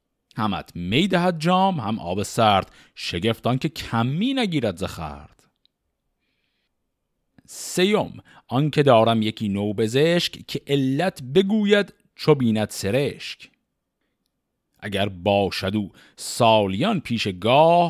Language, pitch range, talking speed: Persian, 105-150 Hz, 85 wpm